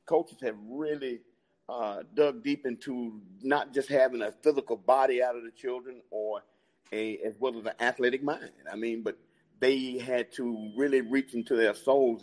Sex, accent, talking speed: male, American, 175 wpm